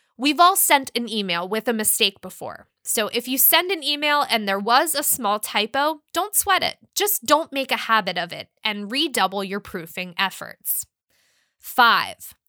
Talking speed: 180 wpm